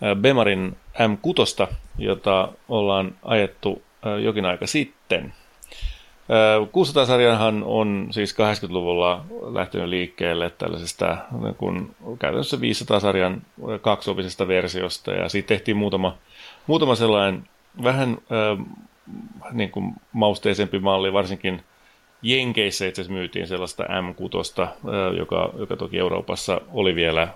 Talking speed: 95 wpm